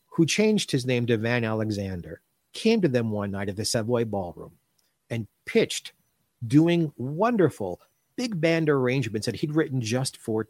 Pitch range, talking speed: 110-155 Hz, 160 wpm